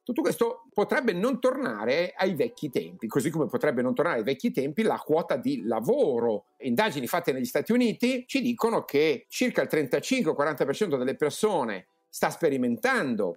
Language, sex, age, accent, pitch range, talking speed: Italian, male, 50-69, native, 150-255 Hz, 155 wpm